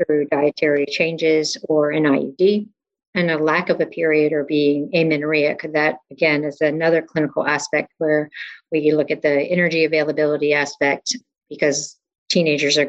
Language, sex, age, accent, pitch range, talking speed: English, female, 50-69, American, 150-175 Hz, 150 wpm